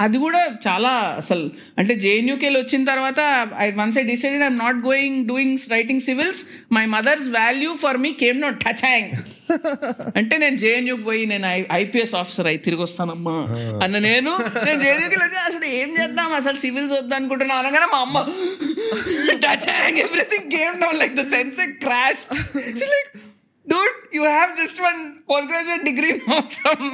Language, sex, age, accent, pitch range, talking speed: Telugu, female, 50-69, native, 180-275 Hz, 130 wpm